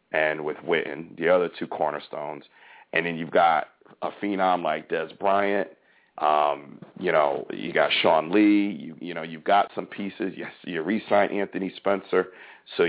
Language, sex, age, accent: English, male, 40-59, American